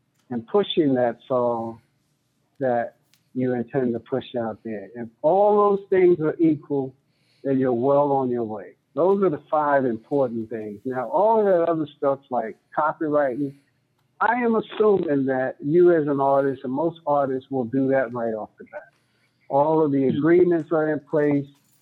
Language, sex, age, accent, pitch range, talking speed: English, male, 60-79, American, 130-175 Hz, 170 wpm